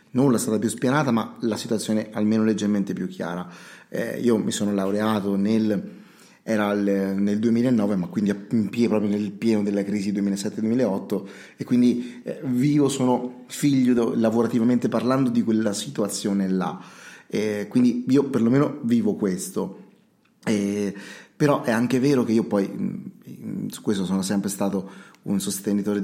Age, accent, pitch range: 30-49, native, 100-120 Hz